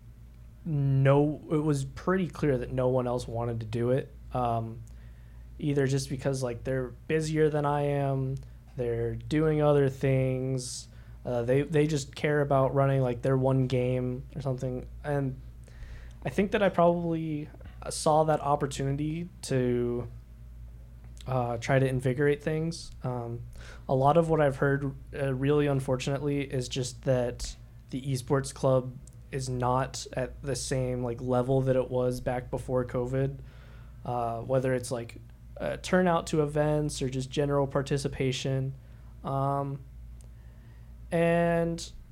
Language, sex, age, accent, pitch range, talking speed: English, male, 20-39, American, 120-145 Hz, 140 wpm